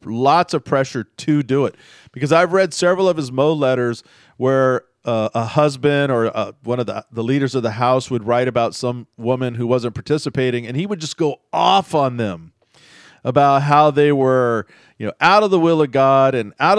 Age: 40-59